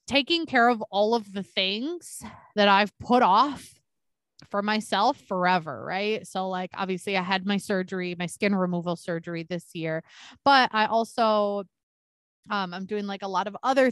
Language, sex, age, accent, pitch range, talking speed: English, female, 20-39, American, 185-225 Hz, 170 wpm